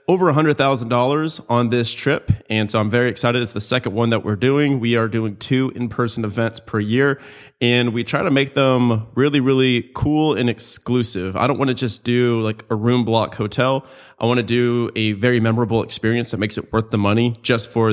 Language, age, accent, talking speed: English, 30-49, American, 210 wpm